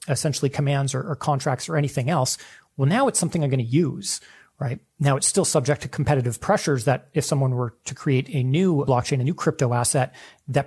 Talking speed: 215 wpm